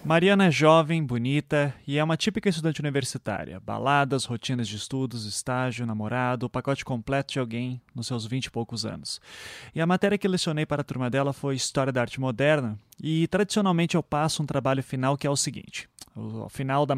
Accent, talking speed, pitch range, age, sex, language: Brazilian, 200 wpm, 125-160 Hz, 20-39, male, Portuguese